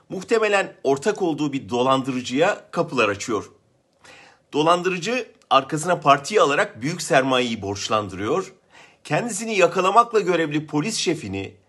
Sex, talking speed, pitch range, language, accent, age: male, 100 wpm, 135-190 Hz, German, Turkish, 40-59